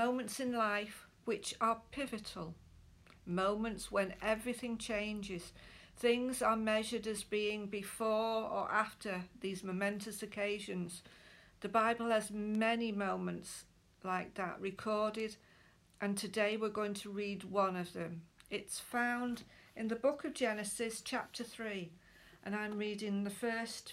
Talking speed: 130 wpm